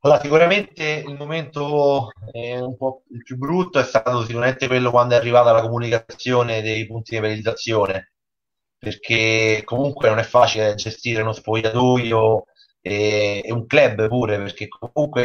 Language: Italian